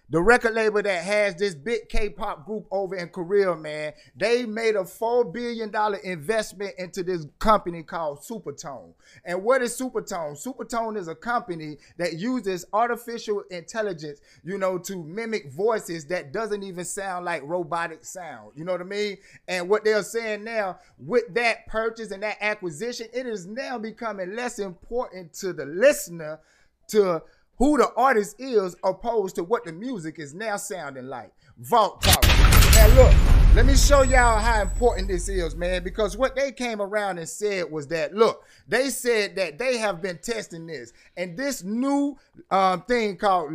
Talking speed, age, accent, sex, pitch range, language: 170 wpm, 30-49, American, male, 175-230 Hz, English